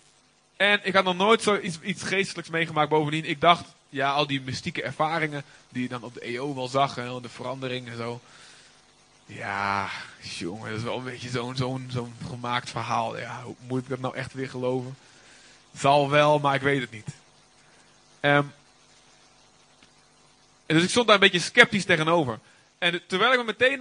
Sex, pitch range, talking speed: male, 125-180 Hz, 185 wpm